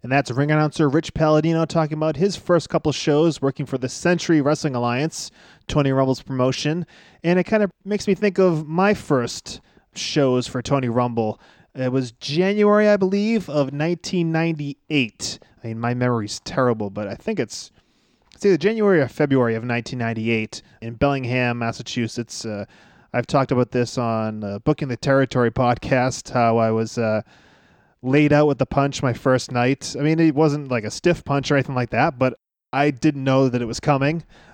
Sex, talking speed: male, 180 wpm